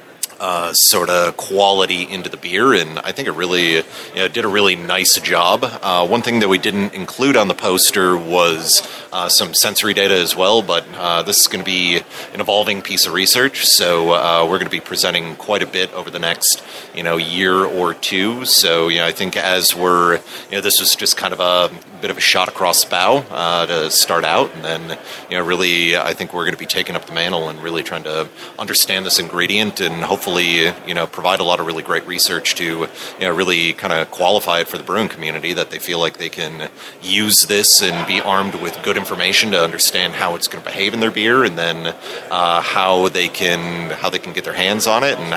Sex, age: male, 30-49